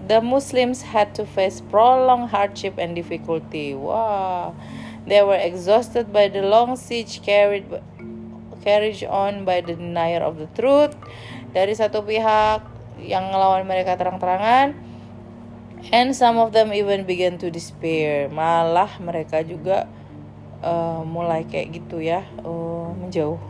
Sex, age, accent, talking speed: female, 30-49, native, 130 wpm